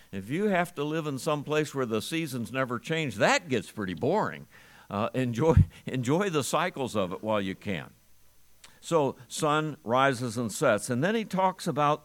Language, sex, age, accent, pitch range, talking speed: English, male, 60-79, American, 120-155 Hz, 185 wpm